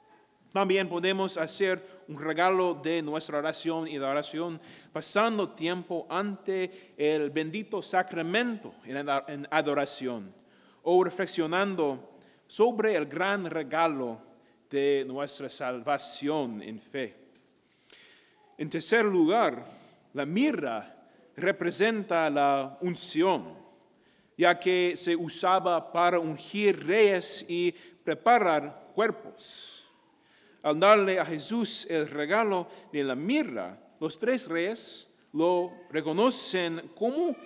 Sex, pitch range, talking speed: male, 155-210 Hz, 100 wpm